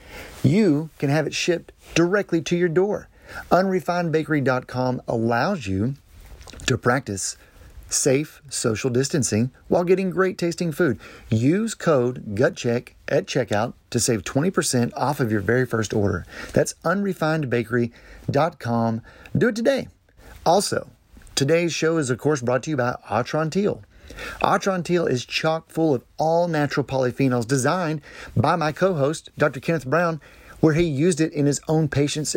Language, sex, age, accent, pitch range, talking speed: English, male, 40-59, American, 120-165 Hz, 140 wpm